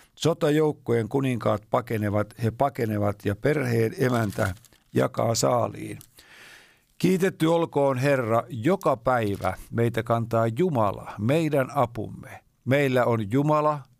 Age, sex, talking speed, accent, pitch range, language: 50-69, male, 100 wpm, native, 110-140 Hz, Finnish